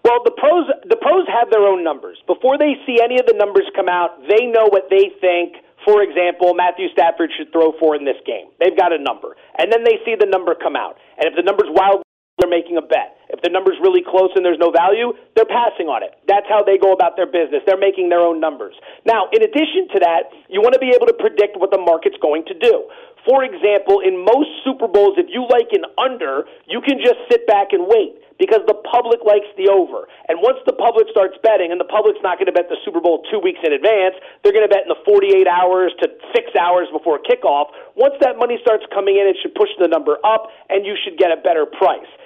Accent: American